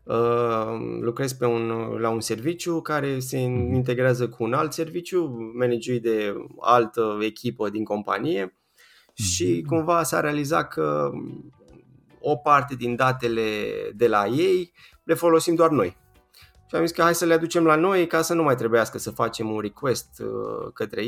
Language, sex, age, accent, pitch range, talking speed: Romanian, male, 20-39, native, 105-135 Hz, 150 wpm